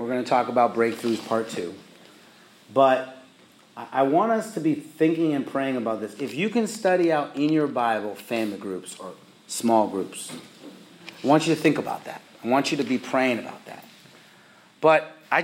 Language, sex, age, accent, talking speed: English, male, 30-49, American, 185 wpm